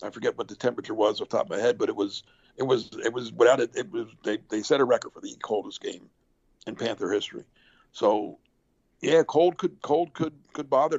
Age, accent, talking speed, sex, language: 60-79, American, 235 wpm, male, English